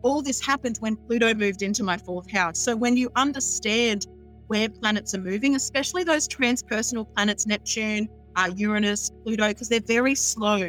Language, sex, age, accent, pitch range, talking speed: English, female, 40-59, Australian, 205-250 Hz, 170 wpm